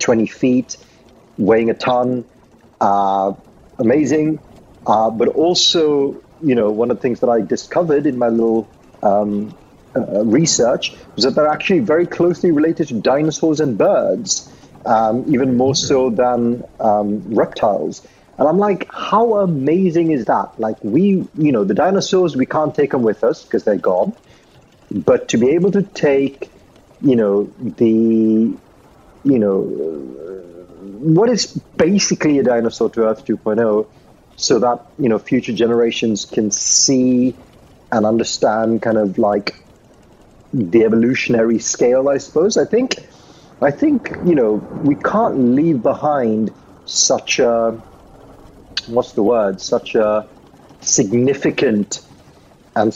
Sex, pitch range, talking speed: male, 110-155 Hz, 135 wpm